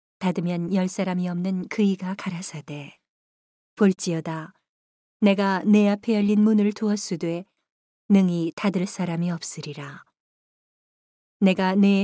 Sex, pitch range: female, 170-205 Hz